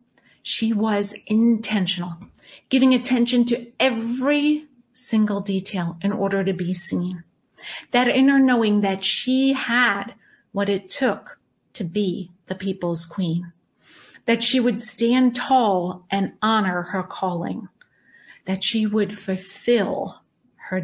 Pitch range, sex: 185-220 Hz, female